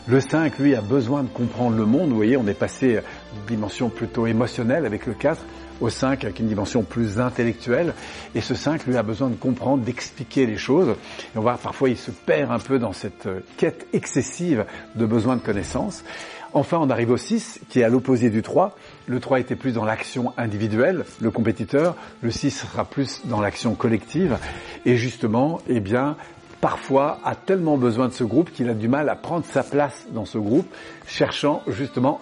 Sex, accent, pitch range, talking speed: male, French, 115-135 Hz, 200 wpm